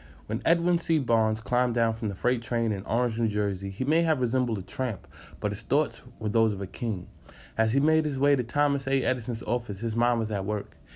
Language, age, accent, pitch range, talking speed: English, 20-39, American, 105-125 Hz, 235 wpm